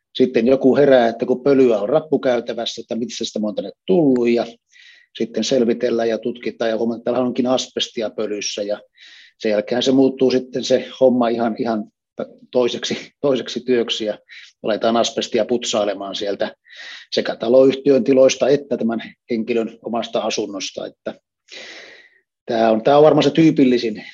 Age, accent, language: 30-49, native, Finnish